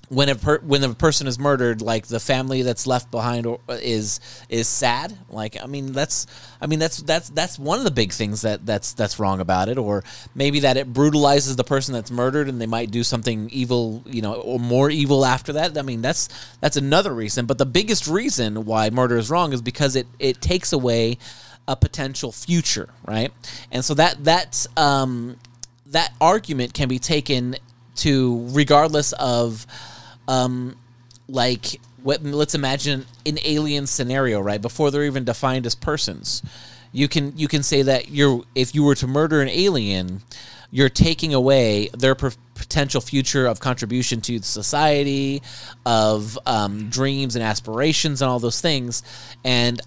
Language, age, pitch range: English, 30-49, 120-145 Hz